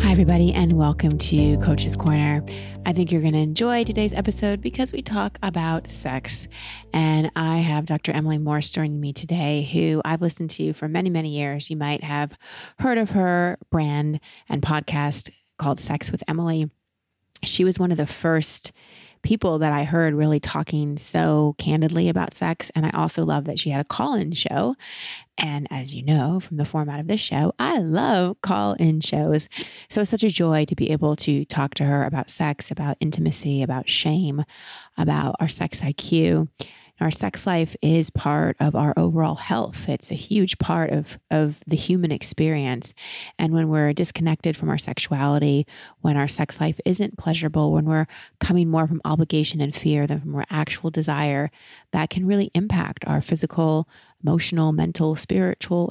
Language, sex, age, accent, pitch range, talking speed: English, female, 30-49, American, 145-165 Hz, 175 wpm